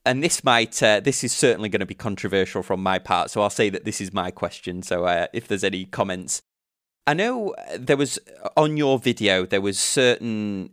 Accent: British